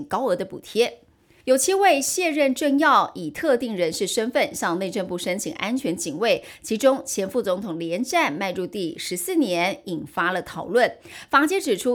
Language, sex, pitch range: Chinese, female, 190-270 Hz